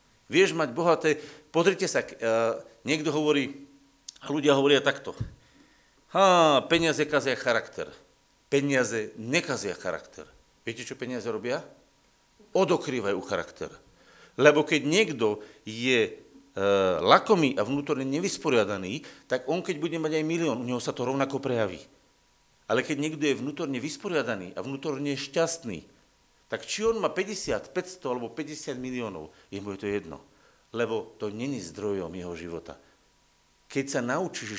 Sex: male